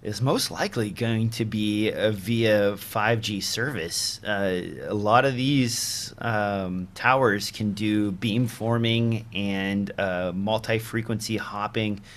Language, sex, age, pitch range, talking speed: English, male, 30-49, 100-115 Hz, 130 wpm